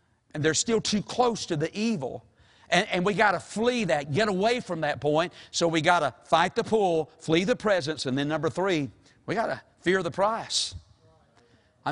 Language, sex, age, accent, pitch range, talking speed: English, male, 50-69, American, 135-215 Hz, 200 wpm